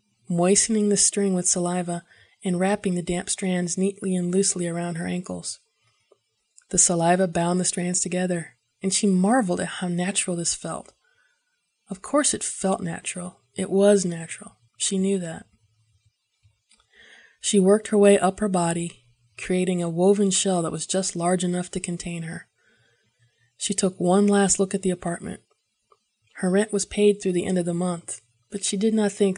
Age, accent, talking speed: 20-39, American, 170 wpm